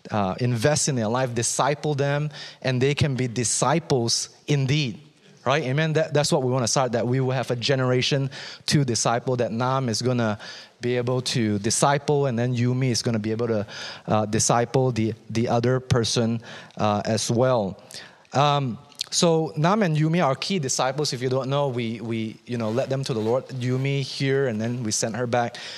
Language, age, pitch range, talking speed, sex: English, 30-49, 120-160 Hz, 200 wpm, male